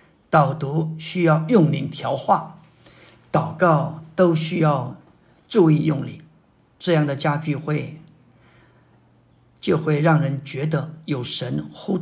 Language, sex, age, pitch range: Chinese, male, 50-69, 140-160 Hz